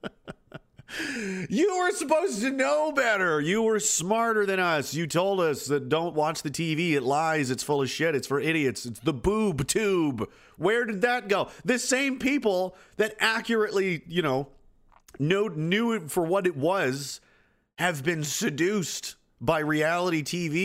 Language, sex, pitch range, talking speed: English, male, 110-180 Hz, 165 wpm